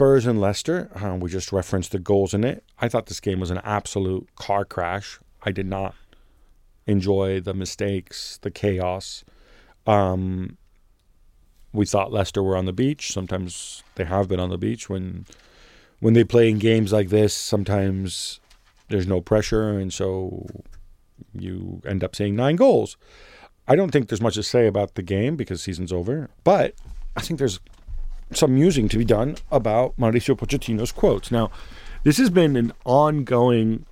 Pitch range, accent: 95-115 Hz, American